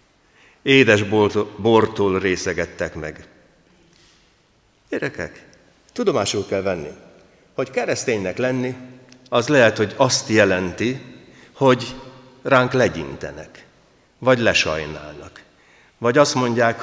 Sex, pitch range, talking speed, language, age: male, 95-125 Hz, 85 wpm, Hungarian, 60-79